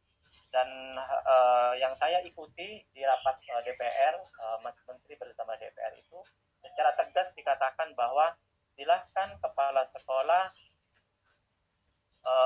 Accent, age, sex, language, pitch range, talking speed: native, 20-39, male, Indonesian, 125-170 Hz, 110 wpm